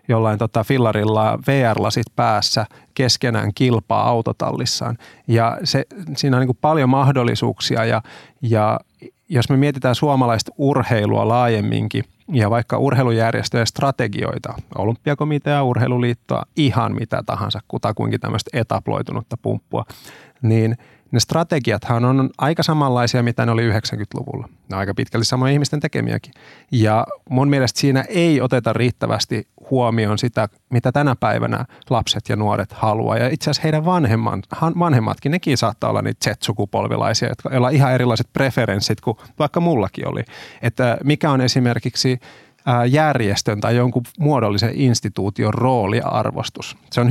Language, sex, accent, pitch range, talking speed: Finnish, male, native, 110-135 Hz, 125 wpm